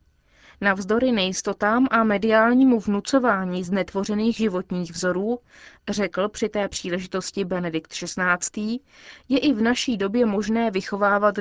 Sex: female